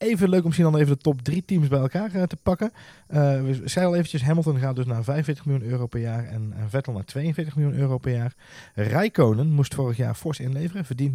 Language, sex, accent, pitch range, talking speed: Dutch, male, Dutch, 110-140 Hz, 230 wpm